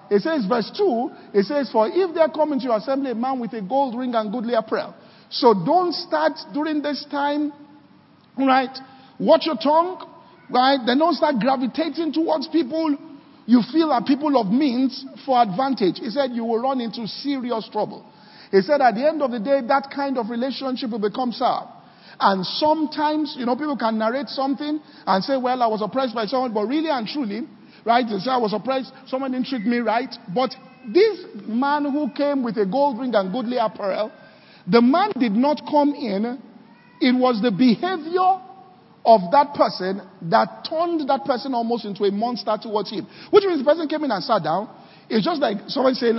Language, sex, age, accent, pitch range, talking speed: English, male, 50-69, Nigerian, 220-285 Hz, 200 wpm